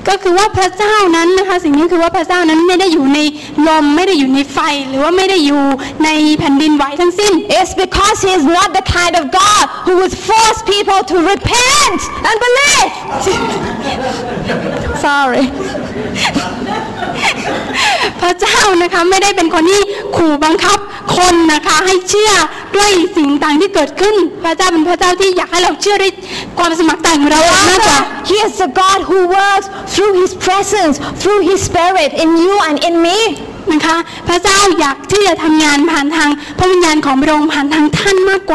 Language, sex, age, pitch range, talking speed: English, female, 20-39, 315-375 Hz, 60 wpm